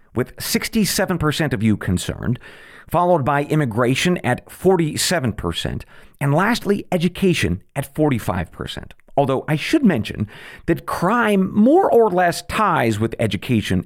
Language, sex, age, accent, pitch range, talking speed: English, male, 50-69, American, 110-165 Hz, 115 wpm